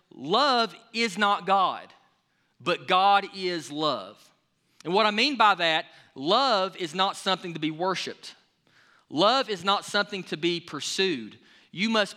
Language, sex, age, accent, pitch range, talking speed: English, male, 30-49, American, 165-220 Hz, 150 wpm